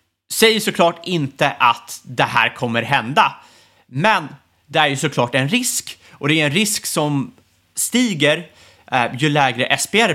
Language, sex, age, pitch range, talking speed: Swedish, male, 30-49, 115-170 Hz, 155 wpm